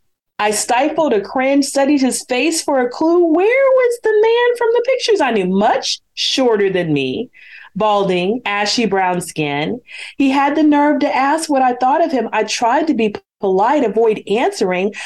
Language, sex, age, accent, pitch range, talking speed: English, female, 40-59, American, 240-325 Hz, 180 wpm